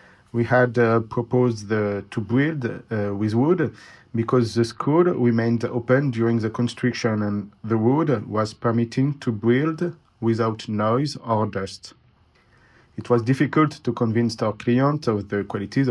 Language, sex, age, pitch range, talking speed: French, male, 50-69, 105-125 Hz, 145 wpm